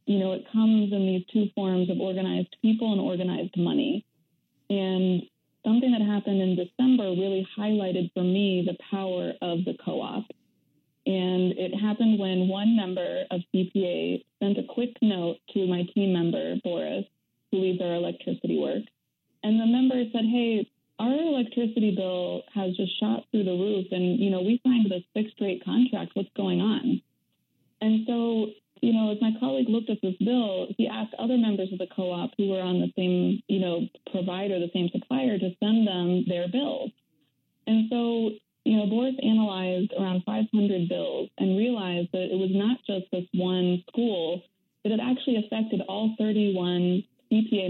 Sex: female